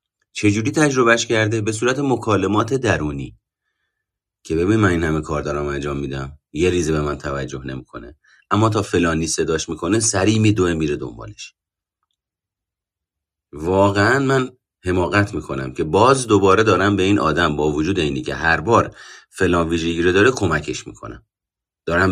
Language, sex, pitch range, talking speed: Persian, male, 75-105 Hz, 155 wpm